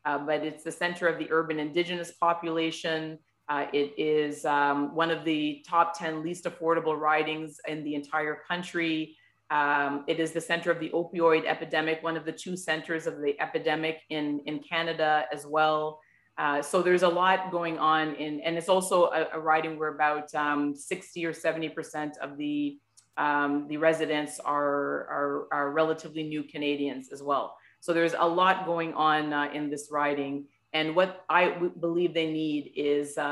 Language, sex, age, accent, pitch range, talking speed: English, female, 30-49, American, 150-170 Hz, 175 wpm